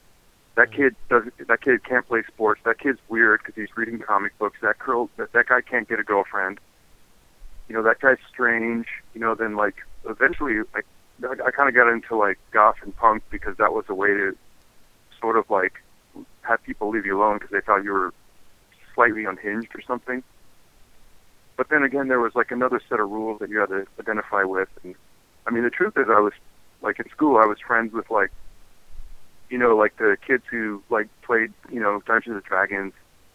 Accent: American